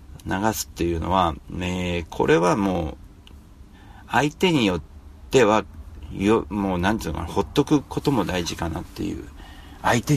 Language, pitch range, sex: Japanese, 80-95 Hz, male